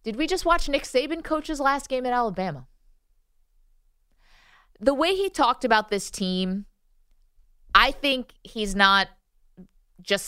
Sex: female